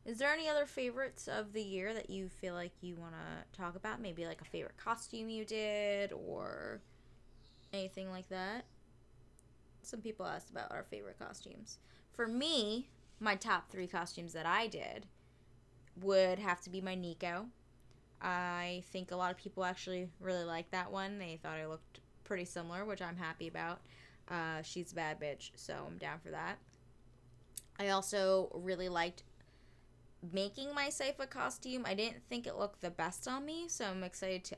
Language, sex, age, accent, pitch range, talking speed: English, female, 10-29, American, 170-215 Hz, 175 wpm